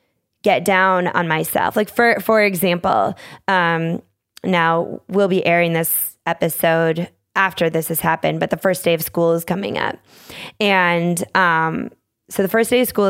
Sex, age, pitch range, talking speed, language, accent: female, 20-39, 165-195 Hz, 165 wpm, English, American